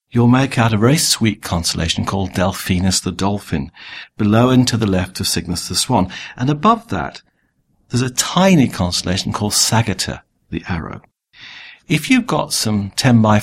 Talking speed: 165 wpm